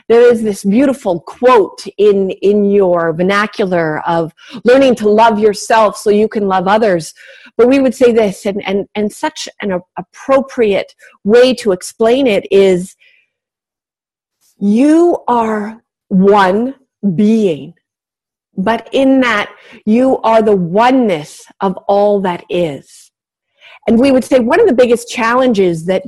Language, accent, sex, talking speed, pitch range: English, American, female, 140 wpm, 195-255 Hz